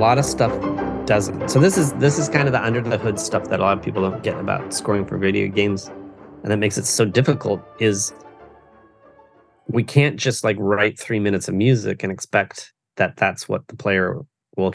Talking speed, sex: 215 wpm, male